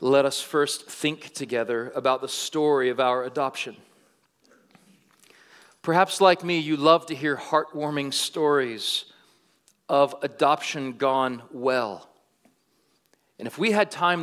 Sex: male